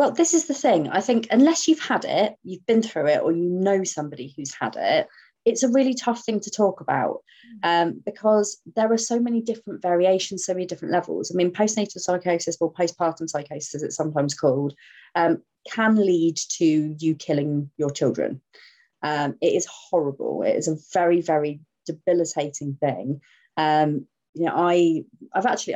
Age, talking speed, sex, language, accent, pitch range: 30-49, 180 wpm, female, English, British, 155-210 Hz